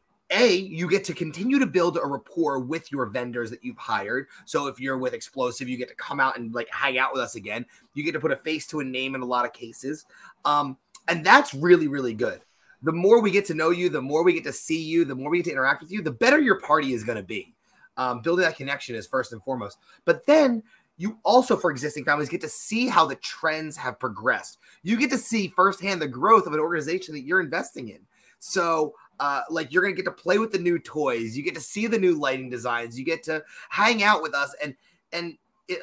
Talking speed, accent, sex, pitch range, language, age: 250 wpm, American, male, 135-190 Hz, English, 30-49